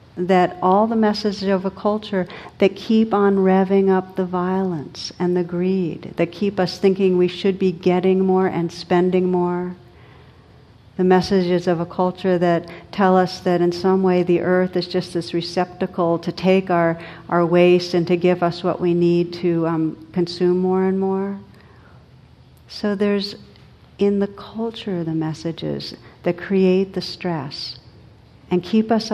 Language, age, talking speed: English, 60-79, 165 wpm